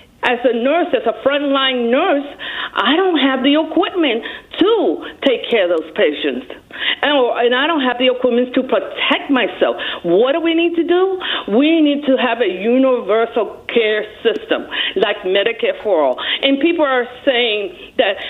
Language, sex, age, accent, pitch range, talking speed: English, female, 50-69, American, 240-310 Hz, 165 wpm